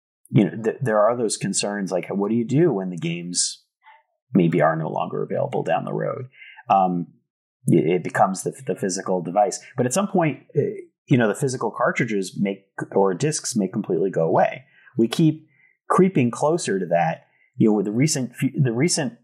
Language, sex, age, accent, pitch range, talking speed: English, male, 30-49, American, 95-130 Hz, 180 wpm